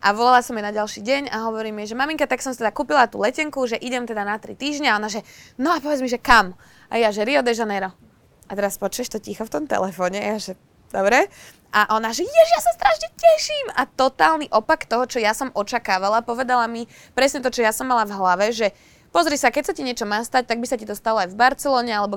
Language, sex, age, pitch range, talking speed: Slovak, female, 20-39, 200-245 Hz, 260 wpm